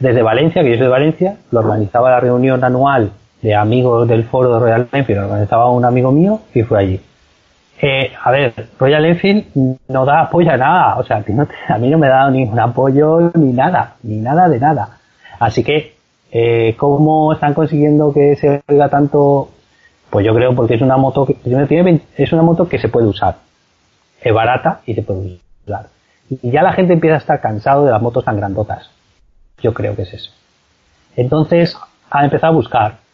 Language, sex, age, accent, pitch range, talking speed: Spanish, male, 30-49, Spanish, 115-150 Hz, 195 wpm